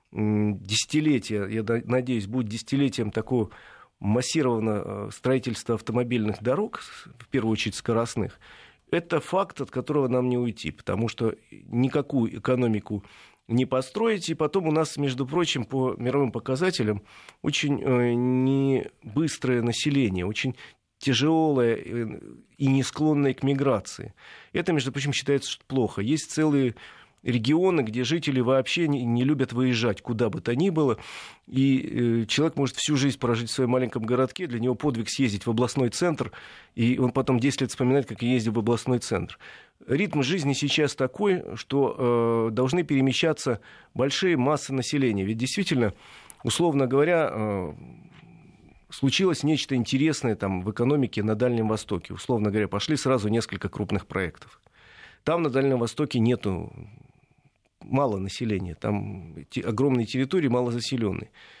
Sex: male